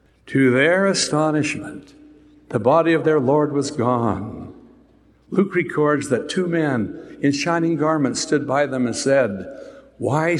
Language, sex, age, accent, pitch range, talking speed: English, male, 60-79, American, 125-160 Hz, 140 wpm